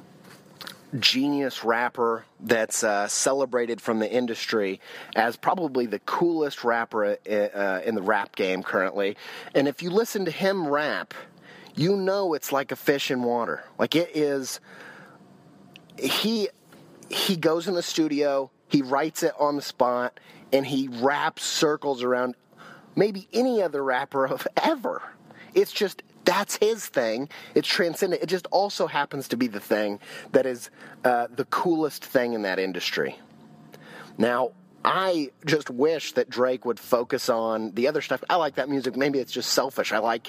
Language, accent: English, American